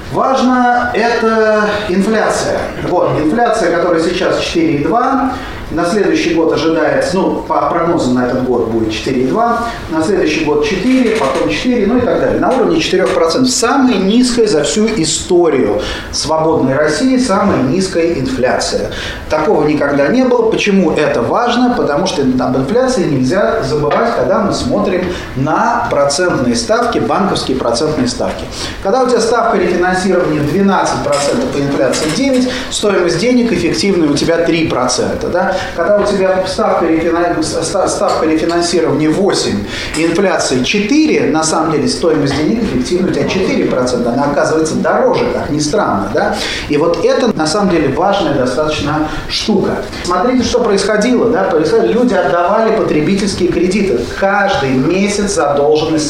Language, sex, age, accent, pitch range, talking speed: Russian, male, 30-49, native, 160-230 Hz, 135 wpm